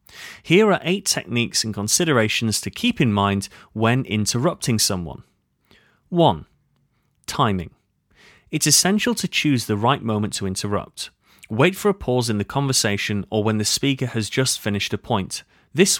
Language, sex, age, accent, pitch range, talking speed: English, male, 30-49, British, 100-140 Hz, 155 wpm